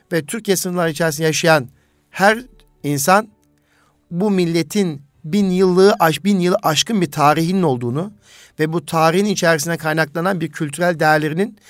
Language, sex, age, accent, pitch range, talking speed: Turkish, male, 50-69, native, 140-190 Hz, 130 wpm